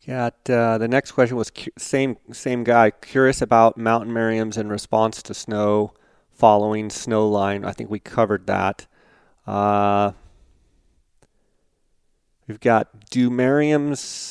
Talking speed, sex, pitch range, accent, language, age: 130 wpm, male, 105-115 Hz, American, English, 30-49